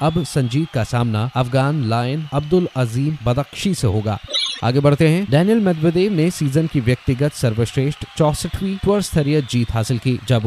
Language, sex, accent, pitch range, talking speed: Hindi, male, native, 120-150 Hz, 160 wpm